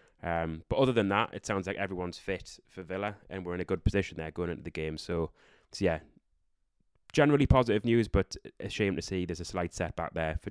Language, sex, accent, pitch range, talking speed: English, male, British, 85-105 Hz, 230 wpm